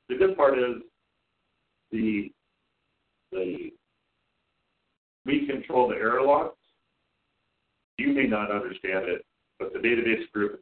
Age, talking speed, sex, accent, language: 60-79, 120 wpm, male, American, English